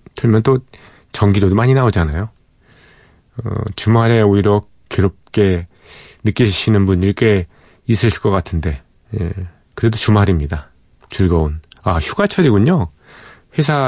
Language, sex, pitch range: Korean, male, 90-125 Hz